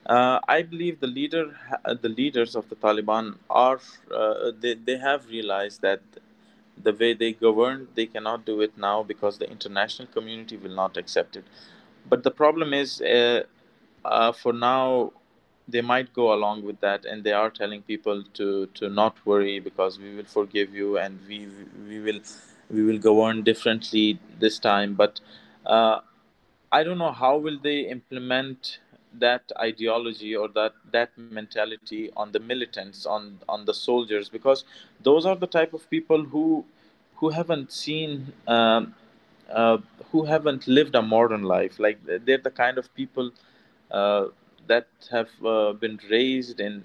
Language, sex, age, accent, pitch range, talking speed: English, male, 20-39, Indian, 105-130 Hz, 160 wpm